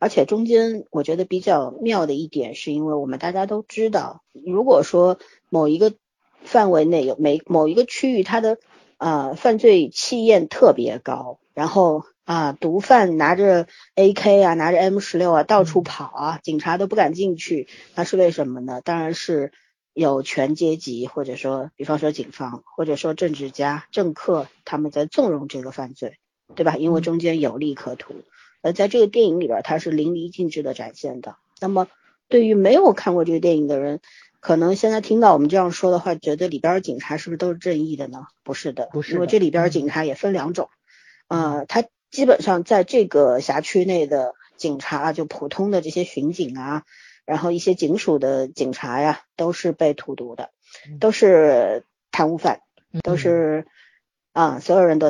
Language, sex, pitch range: Chinese, female, 150-190 Hz